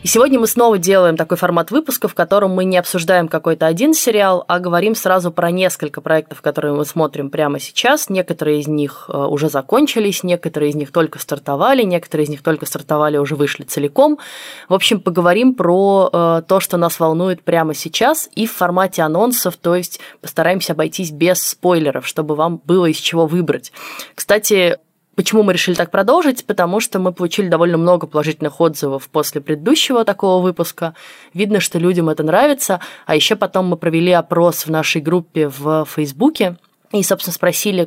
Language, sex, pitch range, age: Russian, female, 155-190 Hz, 20-39